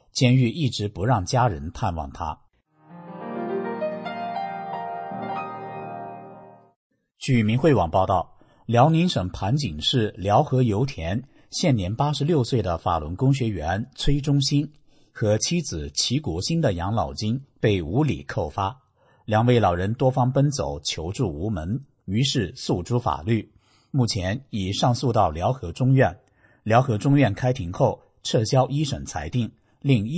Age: 50-69